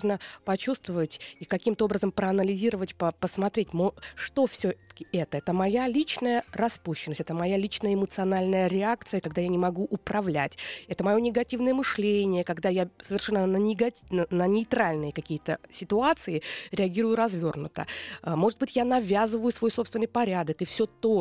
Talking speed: 140 wpm